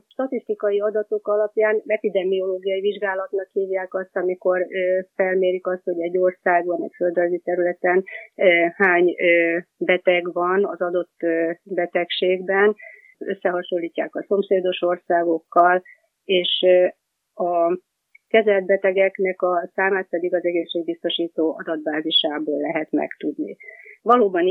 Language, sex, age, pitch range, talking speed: Hungarian, female, 30-49, 170-195 Hz, 95 wpm